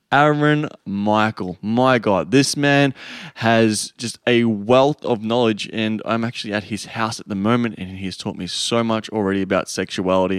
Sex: male